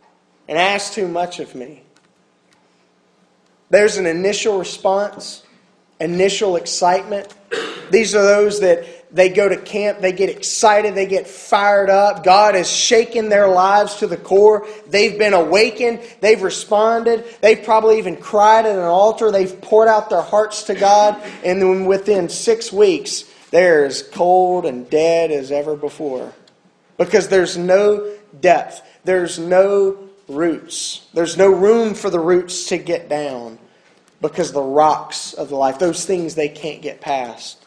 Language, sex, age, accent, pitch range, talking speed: English, male, 30-49, American, 135-205 Hz, 155 wpm